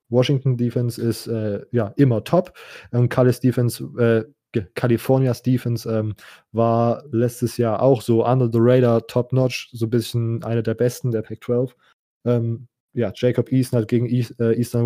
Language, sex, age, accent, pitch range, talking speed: German, male, 20-39, German, 115-125 Hz, 170 wpm